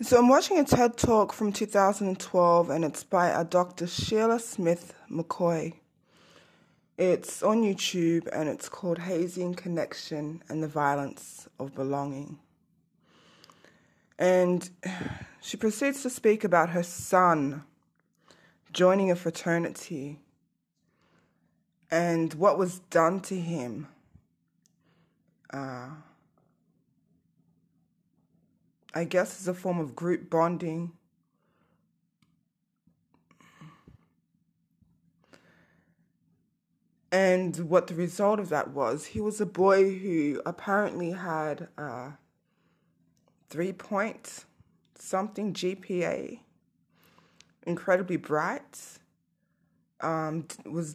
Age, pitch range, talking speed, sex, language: 20-39, 160-190 Hz, 90 wpm, female, English